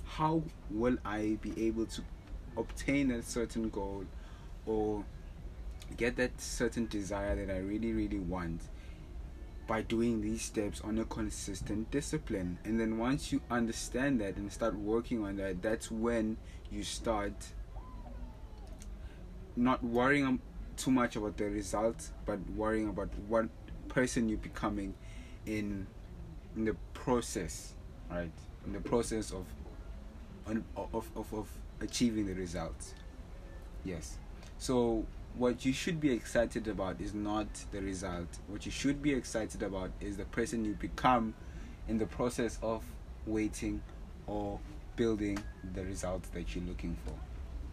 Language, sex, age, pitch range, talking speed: English, male, 20-39, 85-115 Hz, 135 wpm